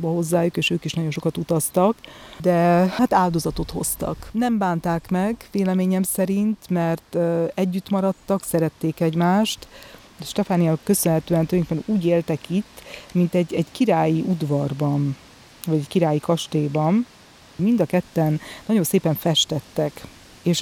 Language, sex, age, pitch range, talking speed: Hungarian, female, 30-49, 160-180 Hz, 130 wpm